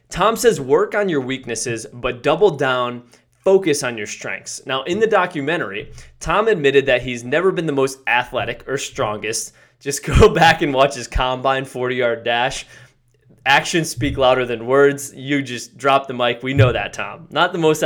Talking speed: 180 wpm